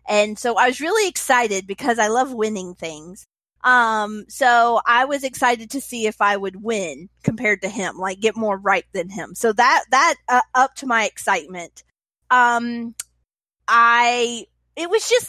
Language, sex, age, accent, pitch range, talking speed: English, female, 30-49, American, 230-320 Hz, 170 wpm